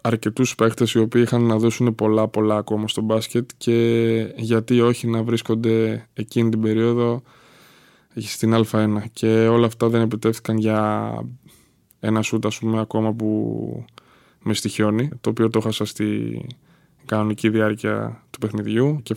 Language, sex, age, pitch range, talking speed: Greek, male, 20-39, 110-115 Hz, 140 wpm